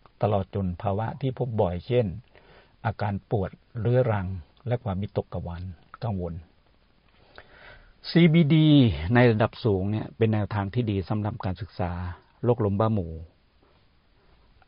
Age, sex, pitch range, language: 60-79, male, 90-110 Hz, Thai